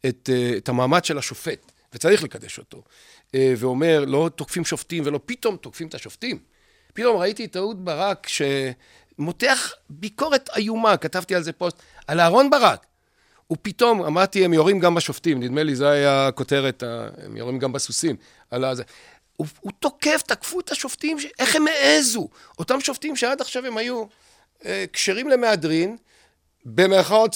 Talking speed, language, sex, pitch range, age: 150 wpm, Hebrew, male, 130-210 Hz, 40-59